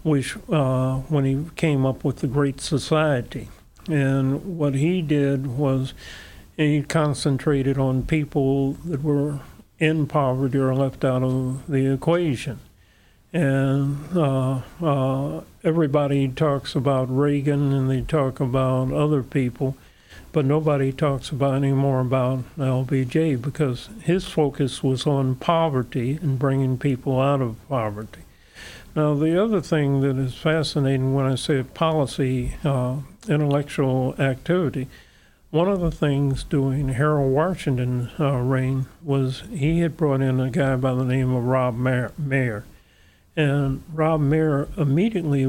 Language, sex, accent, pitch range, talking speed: English, male, American, 130-150 Hz, 135 wpm